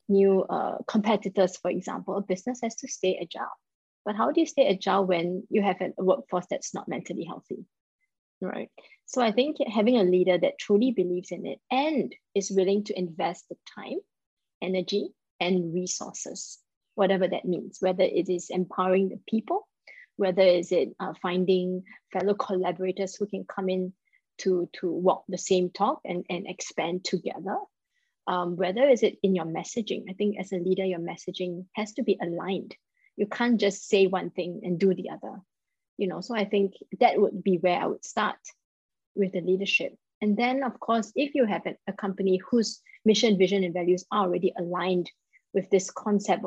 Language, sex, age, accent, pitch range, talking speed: English, female, 20-39, Malaysian, 180-210 Hz, 180 wpm